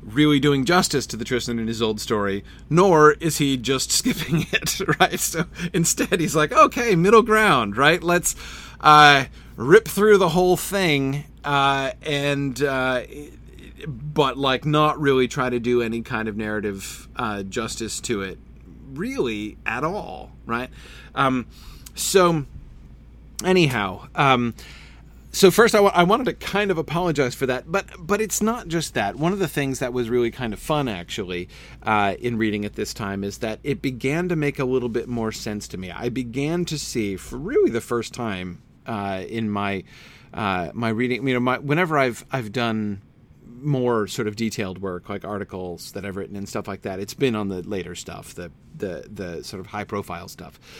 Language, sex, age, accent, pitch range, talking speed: English, male, 30-49, American, 105-155 Hz, 185 wpm